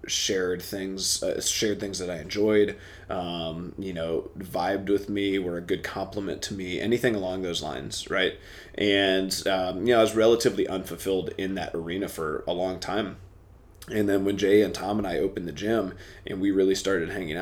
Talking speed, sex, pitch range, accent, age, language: 195 wpm, male, 90-105 Hz, American, 20-39, English